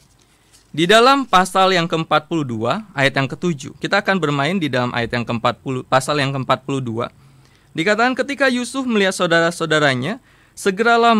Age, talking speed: 20-39, 135 wpm